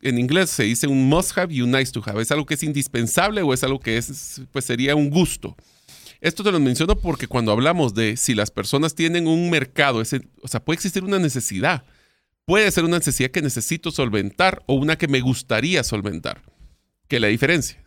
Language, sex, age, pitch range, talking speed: Spanish, male, 40-59, 125-160 Hz, 205 wpm